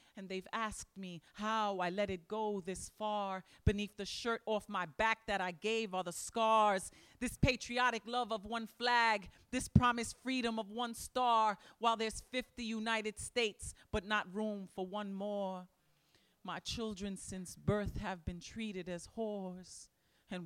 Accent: American